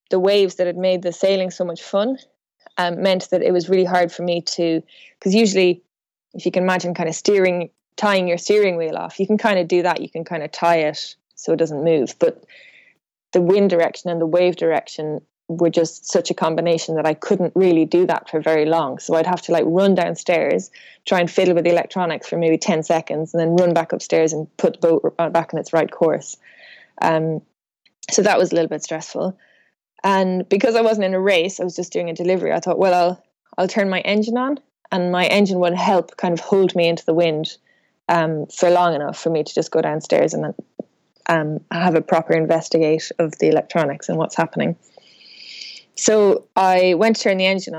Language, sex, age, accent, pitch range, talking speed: English, female, 20-39, Irish, 165-190 Hz, 220 wpm